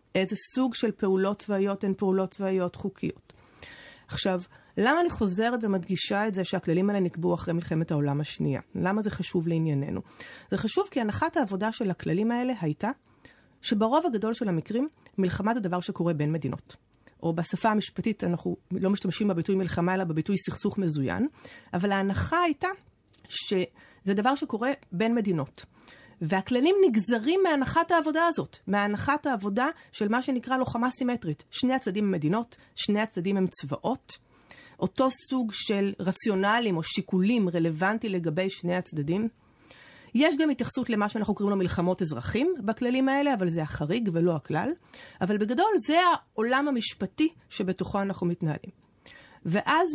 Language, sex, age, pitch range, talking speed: Hebrew, female, 30-49, 180-240 Hz, 145 wpm